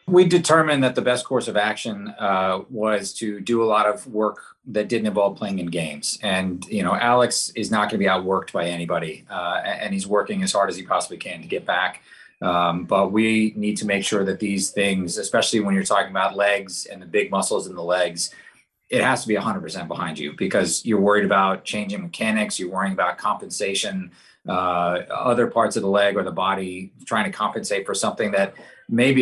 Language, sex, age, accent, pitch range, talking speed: English, male, 30-49, American, 95-115 Hz, 210 wpm